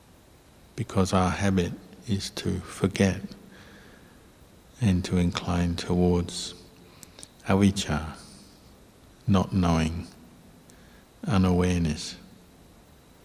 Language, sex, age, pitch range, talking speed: English, male, 50-69, 85-95 Hz, 65 wpm